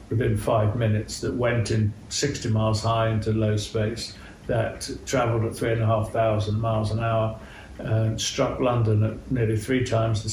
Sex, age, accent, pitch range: male, 50-69, British, 105-125 Hz